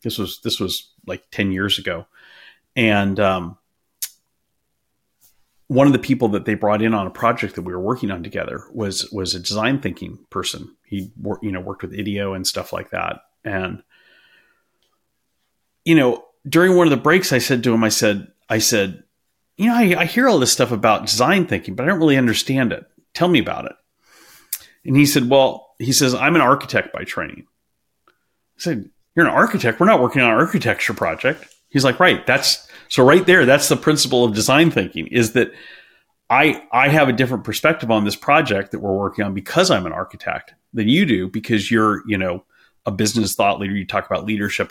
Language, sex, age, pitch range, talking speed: English, male, 40-59, 105-140 Hz, 205 wpm